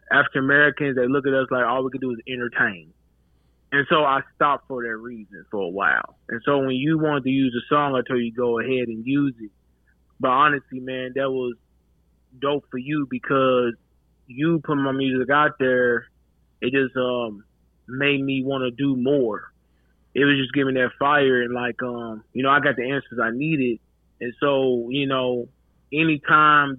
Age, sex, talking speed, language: 20-39, male, 190 wpm, English